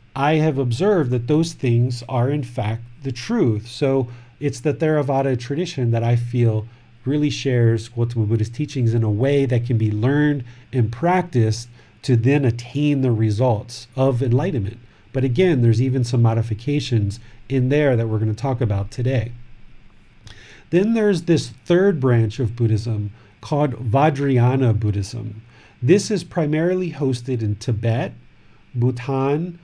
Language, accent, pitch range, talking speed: English, American, 115-140 Hz, 145 wpm